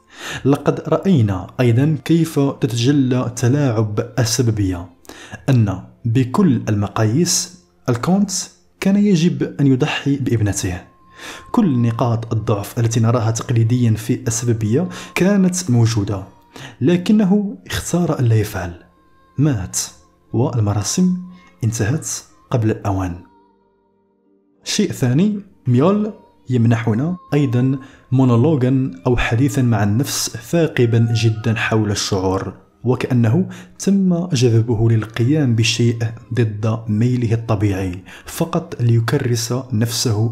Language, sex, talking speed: Arabic, male, 90 wpm